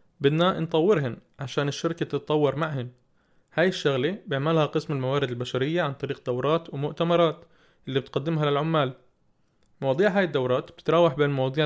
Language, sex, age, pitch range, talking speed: Arabic, male, 20-39, 130-170 Hz, 130 wpm